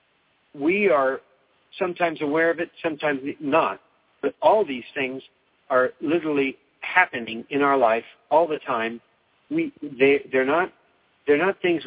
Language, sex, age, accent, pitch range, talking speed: English, male, 60-79, American, 130-165 Hz, 125 wpm